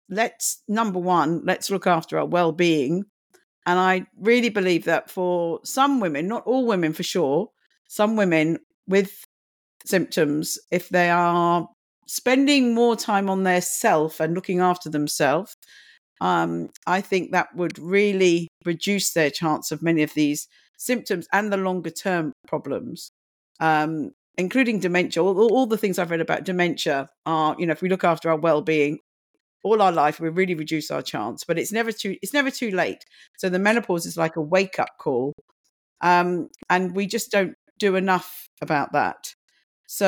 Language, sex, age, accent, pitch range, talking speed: English, female, 50-69, British, 160-200 Hz, 170 wpm